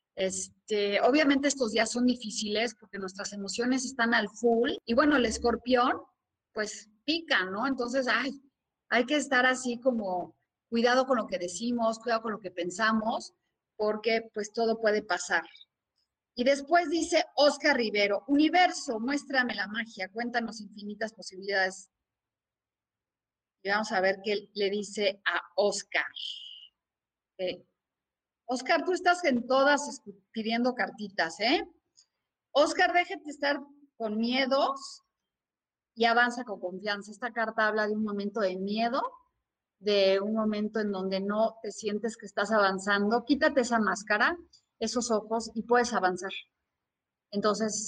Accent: Mexican